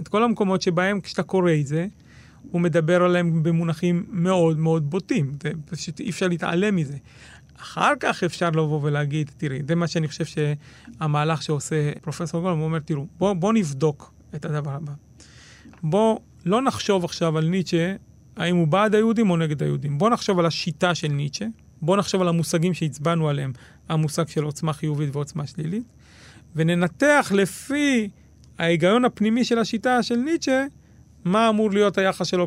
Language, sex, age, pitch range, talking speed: Hebrew, male, 30-49, 160-205 Hz, 160 wpm